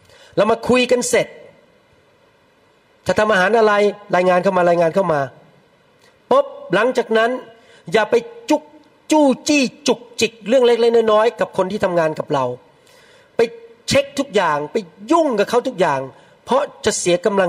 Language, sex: Thai, male